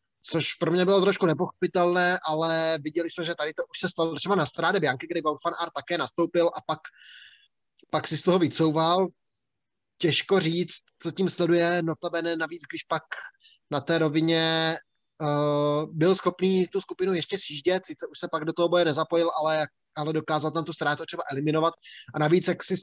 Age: 20-39